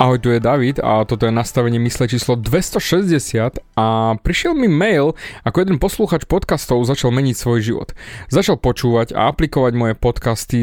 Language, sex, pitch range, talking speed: Slovak, male, 120-175 Hz, 165 wpm